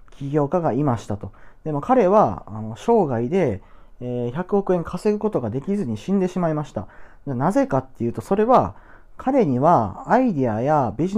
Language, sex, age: Japanese, male, 40-59